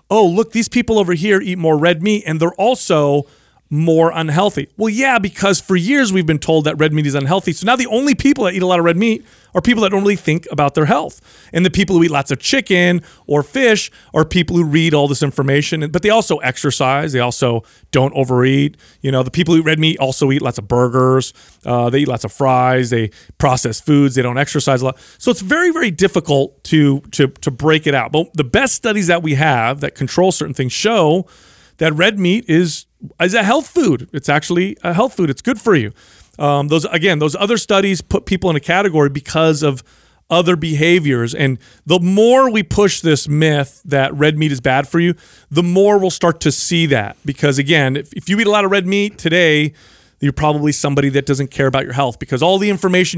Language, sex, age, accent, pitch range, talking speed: English, male, 30-49, American, 140-185 Hz, 230 wpm